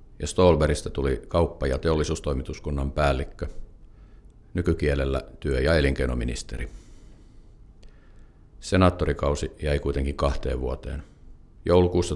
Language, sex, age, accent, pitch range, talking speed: Finnish, male, 50-69, native, 70-80 Hz, 80 wpm